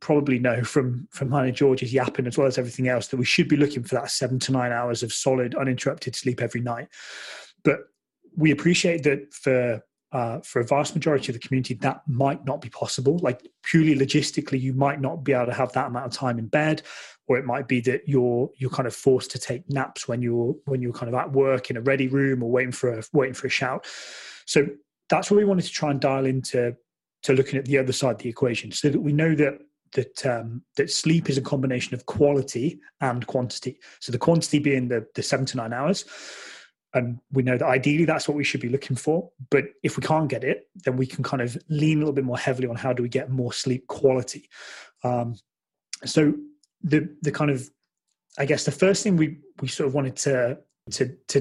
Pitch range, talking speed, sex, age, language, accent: 125-145 Hz, 230 wpm, male, 30-49, English, British